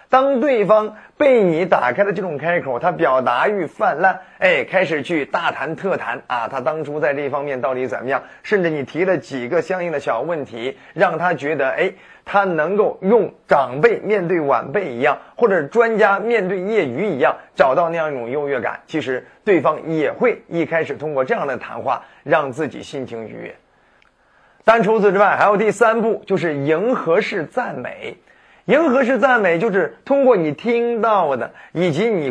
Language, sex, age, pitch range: Chinese, male, 30-49, 155-220 Hz